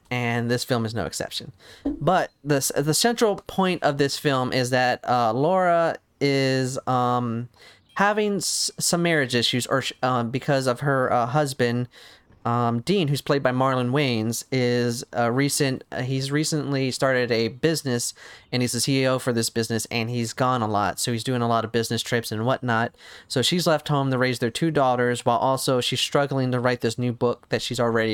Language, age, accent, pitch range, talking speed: English, 30-49, American, 120-150 Hz, 195 wpm